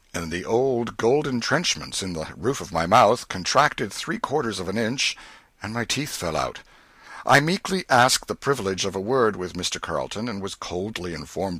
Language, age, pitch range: English, 60-79, 85-130 Hz